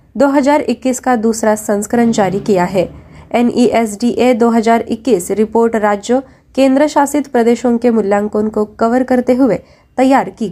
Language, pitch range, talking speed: Marathi, 210-260 Hz, 125 wpm